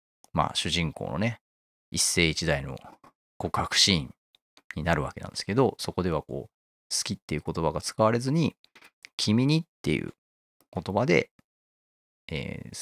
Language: Japanese